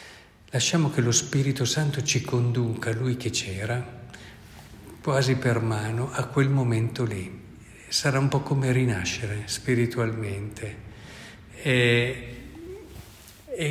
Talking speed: 105 wpm